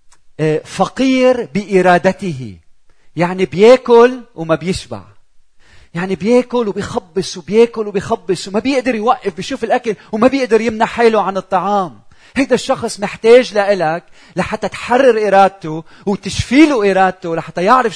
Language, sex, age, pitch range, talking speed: Arabic, male, 40-59, 125-200 Hz, 110 wpm